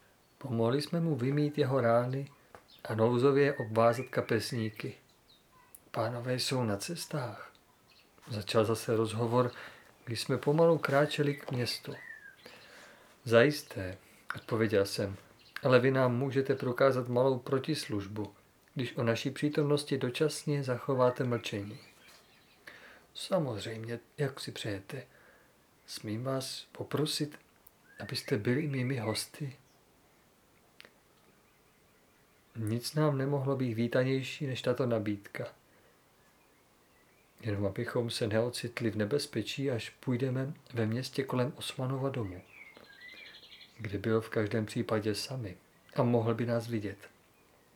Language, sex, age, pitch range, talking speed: Czech, male, 40-59, 115-140 Hz, 105 wpm